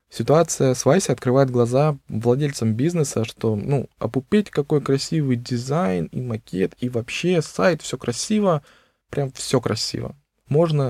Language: Russian